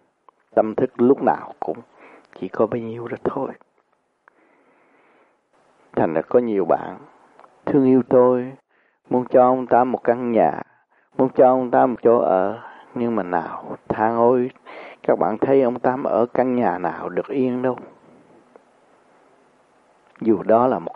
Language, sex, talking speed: Vietnamese, male, 155 wpm